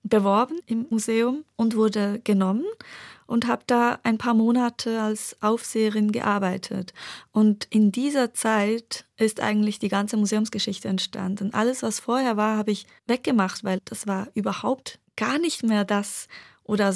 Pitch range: 200-235 Hz